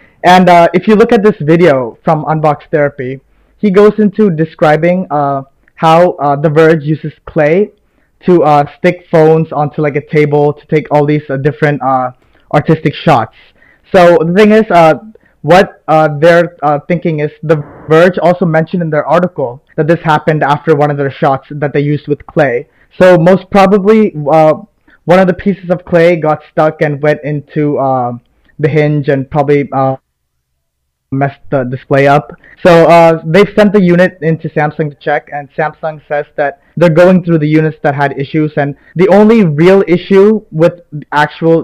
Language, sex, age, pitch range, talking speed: English, male, 20-39, 145-175 Hz, 180 wpm